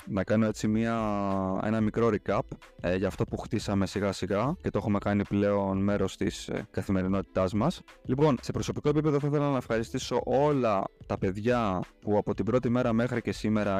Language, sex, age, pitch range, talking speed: Greek, male, 20-39, 105-140 Hz, 185 wpm